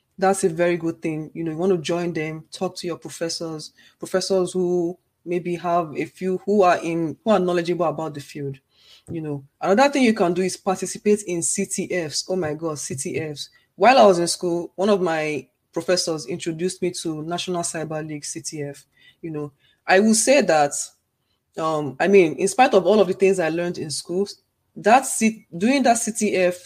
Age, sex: 20-39, female